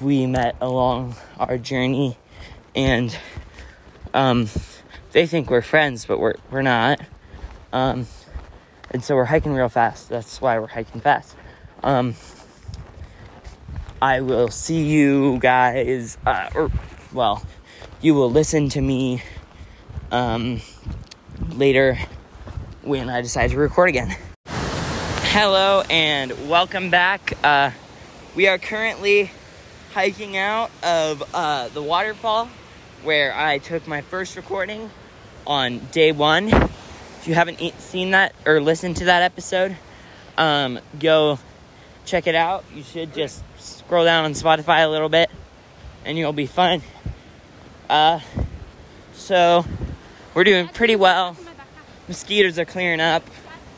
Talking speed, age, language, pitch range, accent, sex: 125 wpm, 20-39, English, 120-170 Hz, American, male